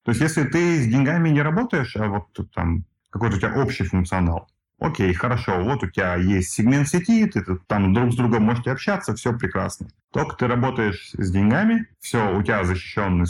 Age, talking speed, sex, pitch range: 30-49, 190 wpm, male, 95-120 Hz